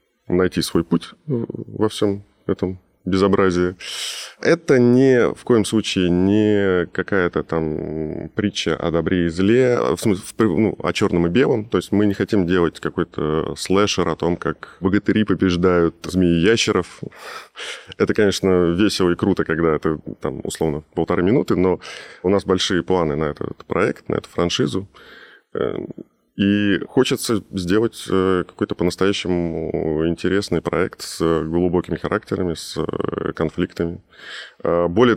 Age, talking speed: 20-39, 130 wpm